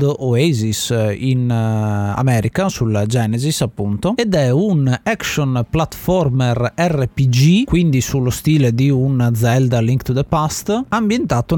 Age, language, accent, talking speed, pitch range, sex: 30-49, Italian, native, 120 wpm, 120-150 Hz, male